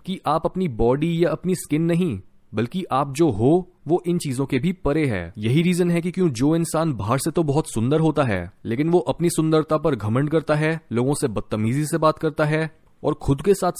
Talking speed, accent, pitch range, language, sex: 225 wpm, native, 120-170 Hz, Hindi, male